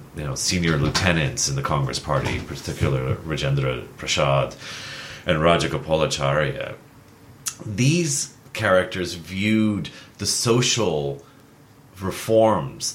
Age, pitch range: 30-49, 85-130 Hz